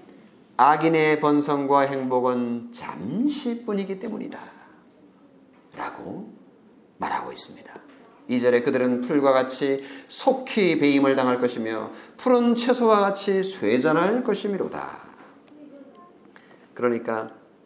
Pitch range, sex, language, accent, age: 135-215 Hz, male, Korean, native, 40-59